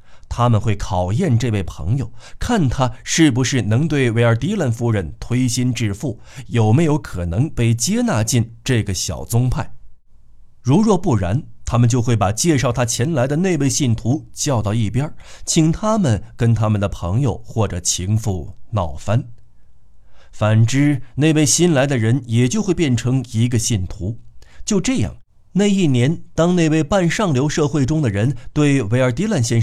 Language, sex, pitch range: Chinese, male, 105-140 Hz